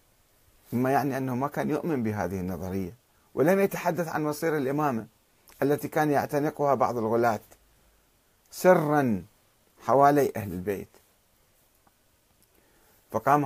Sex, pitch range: male, 105-140 Hz